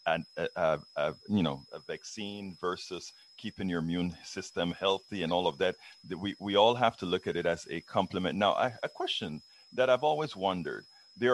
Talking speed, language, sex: 195 wpm, English, male